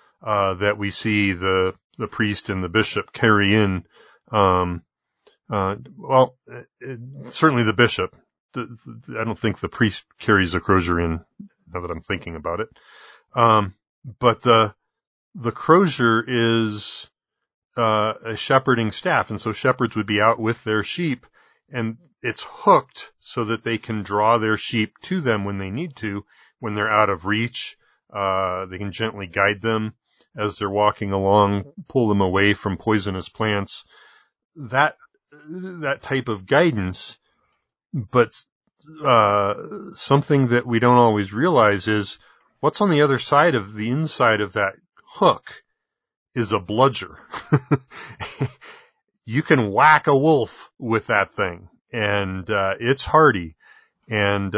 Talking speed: 145 wpm